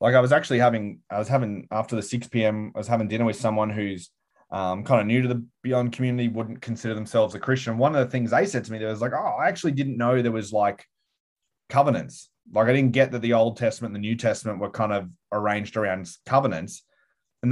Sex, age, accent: male, 20-39, Australian